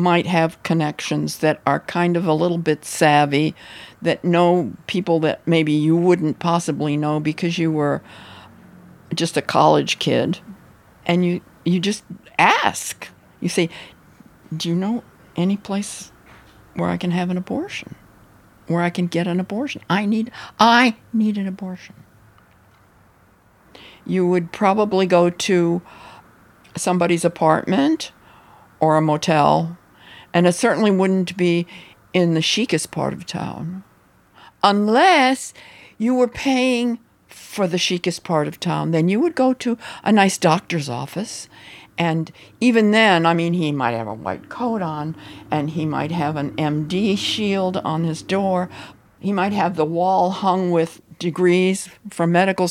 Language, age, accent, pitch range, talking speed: English, 50-69, American, 155-190 Hz, 145 wpm